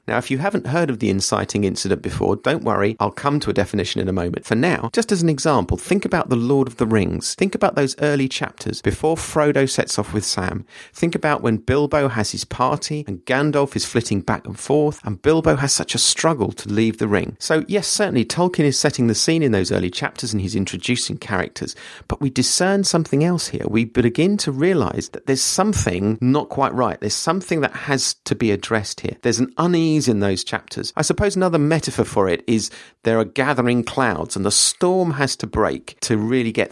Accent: British